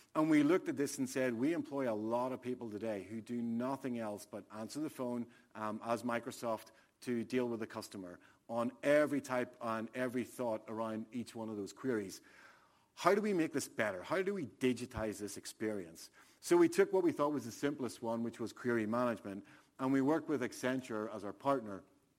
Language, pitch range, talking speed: English, 110-135 Hz, 205 wpm